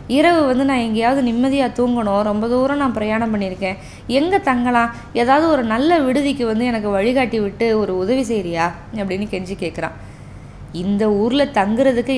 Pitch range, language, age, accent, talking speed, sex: 215-305 Hz, Tamil, 20-39, native, 150 wpm, female